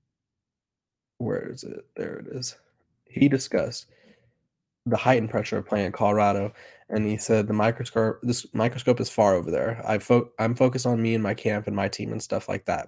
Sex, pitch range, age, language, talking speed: male, 100-115 Hz, 20-39, English, 185 wpm